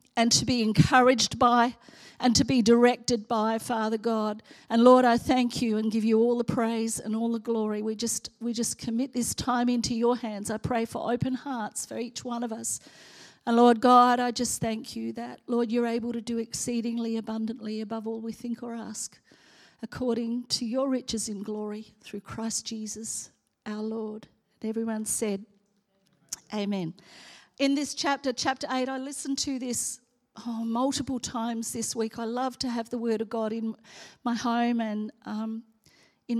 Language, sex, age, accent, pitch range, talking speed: English, female, 40-59, Australian, 220-250 Hz, 185 wpm